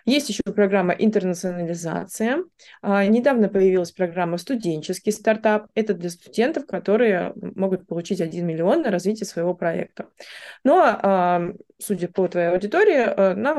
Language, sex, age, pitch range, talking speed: Russian, female, 20-39, 180-220 Hz, 120 wpm